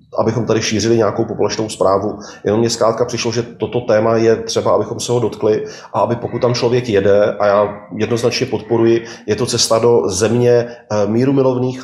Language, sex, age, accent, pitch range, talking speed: Czech, male, 30-49, native, 105-120 Hz, 175 wpm